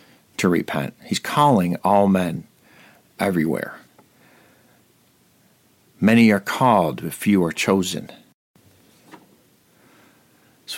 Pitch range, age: 90-105 Hz, 50-69